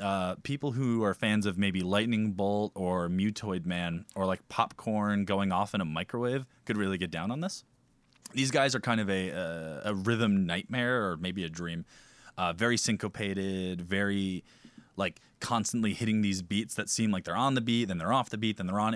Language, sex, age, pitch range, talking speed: English, male, 20-39, 90-115 Hz, 205 wpm